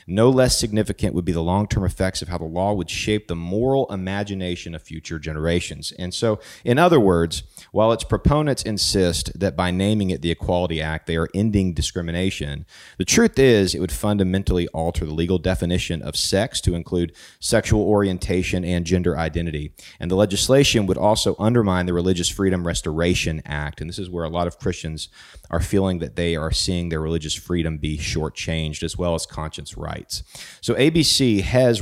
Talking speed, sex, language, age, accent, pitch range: 185 wpm, male, English, 30-49, American, 85-105 Hz